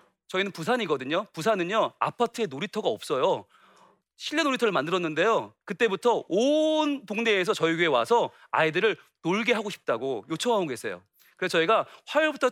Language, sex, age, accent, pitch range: Korean, male, 40-59, native, 170-260 Hz